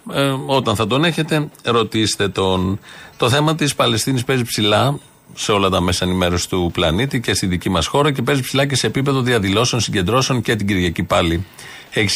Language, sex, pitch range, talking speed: Greek, male, 110-135 Hz, 190 wpm